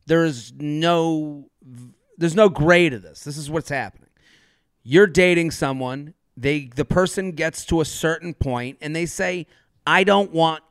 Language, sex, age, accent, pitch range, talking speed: English, male, 30-49, American, 135-180 Hz, 165 wpm